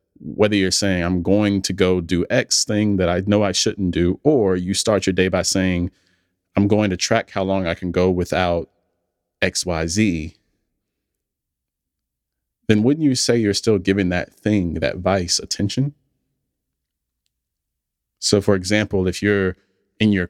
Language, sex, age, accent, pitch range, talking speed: English, male, 30-49, American, 85-100 Hz, 165 wpm